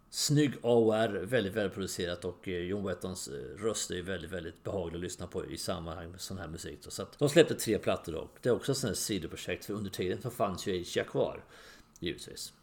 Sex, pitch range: male, 100-145 Hz